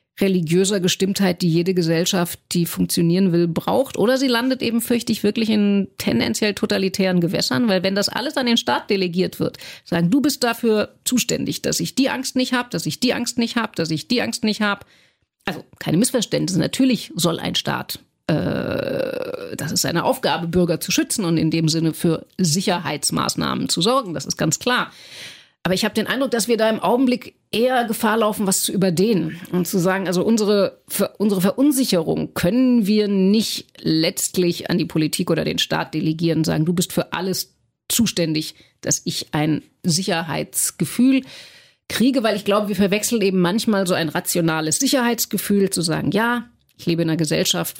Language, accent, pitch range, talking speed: German, German, 170-230 Hz, 180 wpm